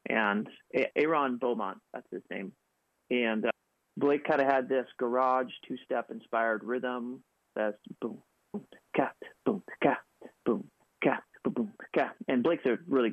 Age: 30-49